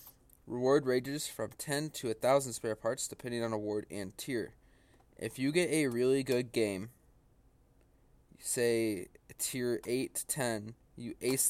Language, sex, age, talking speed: English, male, 20-39, 140 wpm